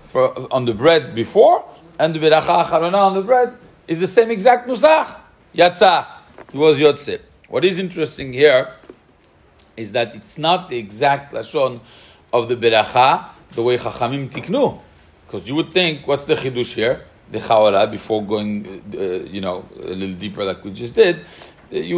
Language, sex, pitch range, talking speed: English, male, 120-180 Hz, 165 wpm